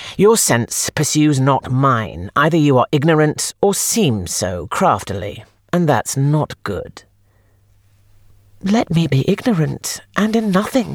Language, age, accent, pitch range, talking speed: English, 40-59, British, 105-155 Hz, 130 wpm